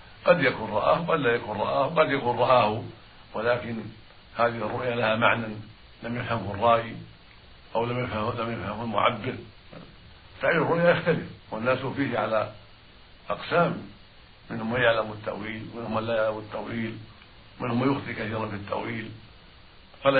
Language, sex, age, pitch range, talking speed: Arabic, male, 60-79, 105-120 Hz, 130 wpm